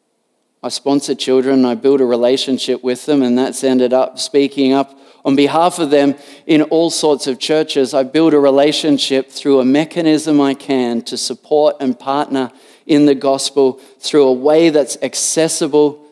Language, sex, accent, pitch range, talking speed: English, male, Australian, 130-165 Hz, 170 wpm